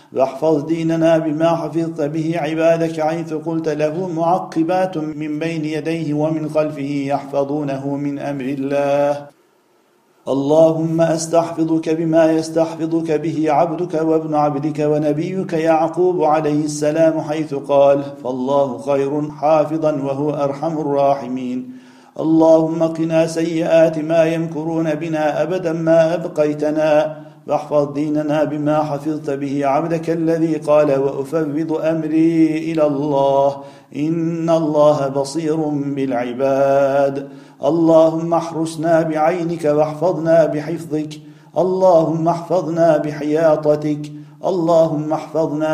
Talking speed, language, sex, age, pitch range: 95 wpm, Turkish, male, 50-69, 145-160 Hz